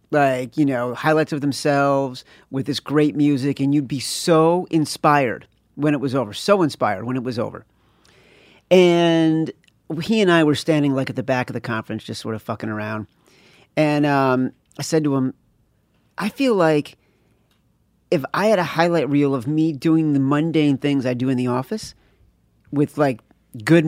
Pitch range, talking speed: 125-155 Hz, 180 wpm